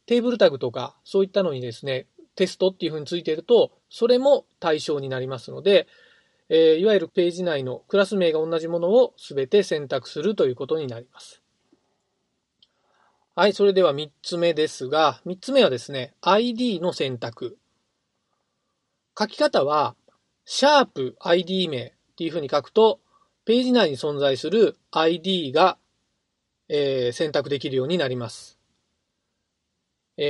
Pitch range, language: 145-225 Hz, Japanese